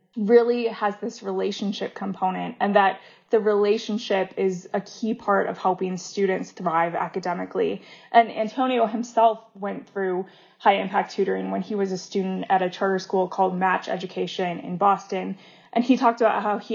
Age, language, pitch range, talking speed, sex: 20-39, English, 185-215 Hz, 165 wpm, female